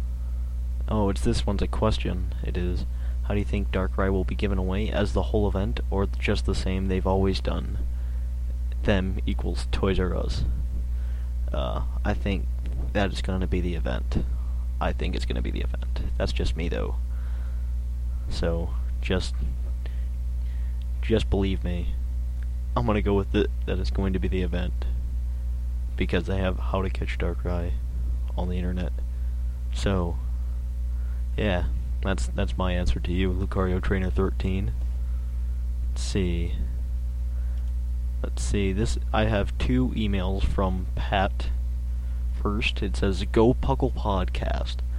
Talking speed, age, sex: 145 wpm, 20-39, male